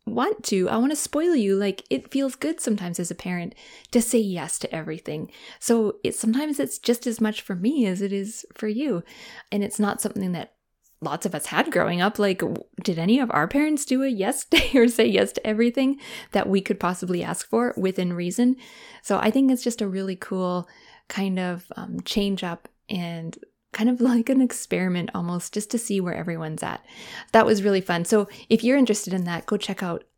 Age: 20-39